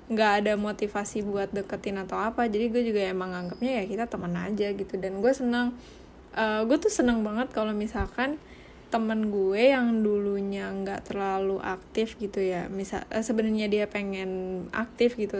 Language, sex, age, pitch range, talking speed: Indonesian, female, 10-29, 205-245 Hz, 170 wpm